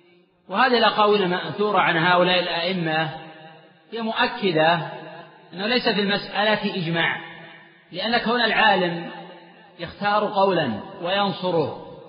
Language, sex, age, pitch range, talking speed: Arabic, male, 40-59, 180-210 Hz, 95 wpm